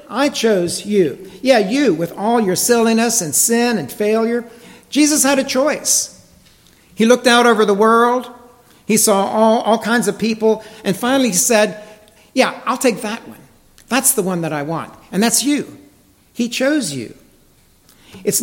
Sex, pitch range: male, 170-235 Hz